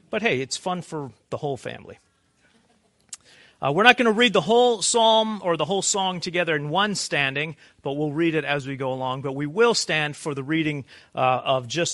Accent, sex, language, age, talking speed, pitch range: American, male, English, 40-59, 215 wpm, 130-180 Hz